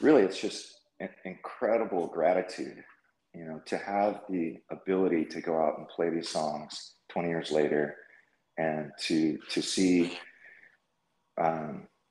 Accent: American